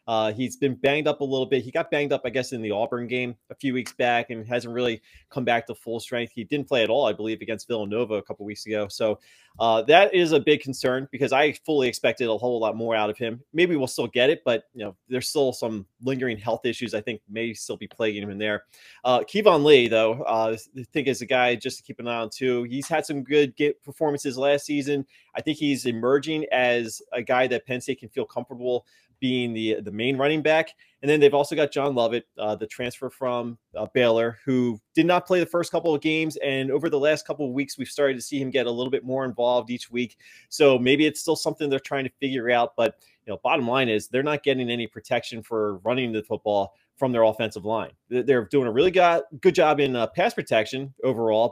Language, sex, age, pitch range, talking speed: English, male, 20-39, 115-140 Hz, 245 wpm